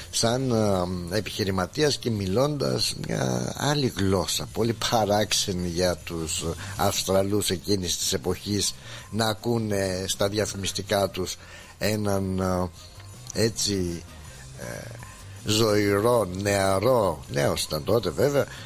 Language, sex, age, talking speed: Greek, male, 60-79, 100 wpm